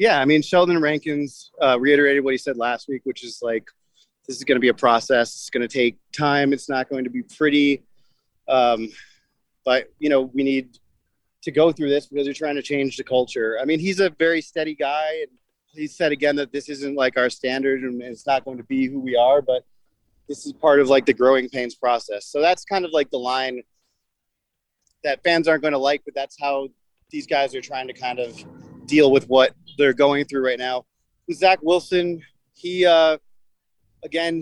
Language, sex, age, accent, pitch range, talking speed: English, male, 30-49, American, 130-155 Hz, 210 wpm